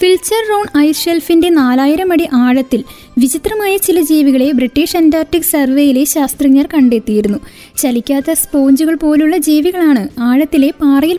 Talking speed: 105 wpm